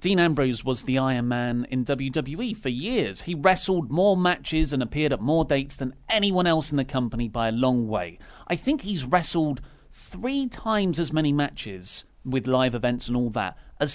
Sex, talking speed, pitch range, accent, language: male, 195 wpm, 125-180 Hz, British, English